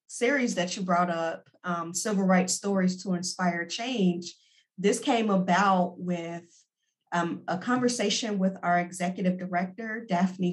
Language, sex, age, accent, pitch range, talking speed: English, female, 40-59, American, 175-205 Hz, 135 wpm